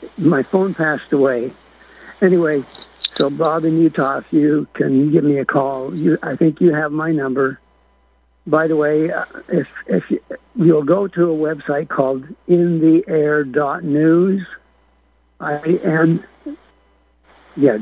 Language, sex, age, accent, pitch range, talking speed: English, male, 60-79, American, 130-160 Hz, 145 wpm